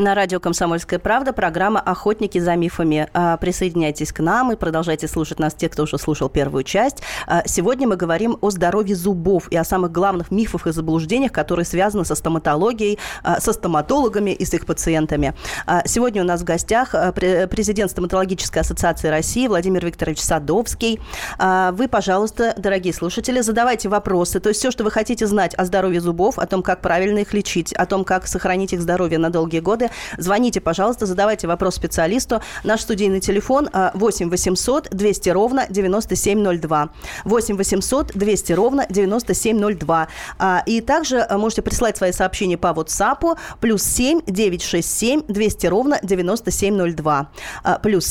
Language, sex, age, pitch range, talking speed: Russian, female, 20-39, 175-220 Hz, 150 wpm